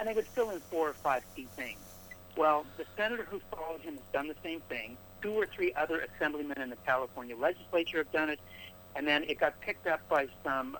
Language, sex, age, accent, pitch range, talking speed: English, male, 60-79, American, 120-170 Hz, 230 wpm